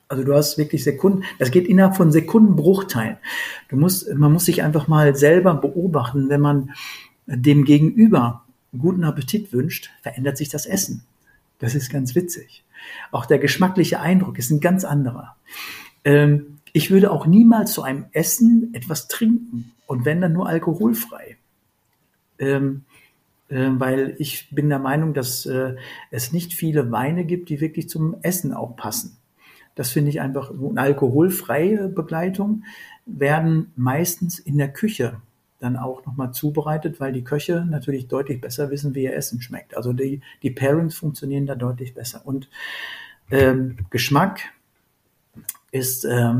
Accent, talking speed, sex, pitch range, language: German, 145 wpm, male, 130-165 Hz, German